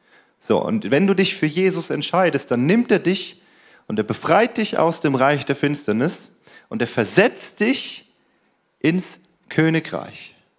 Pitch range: 155-195 Hz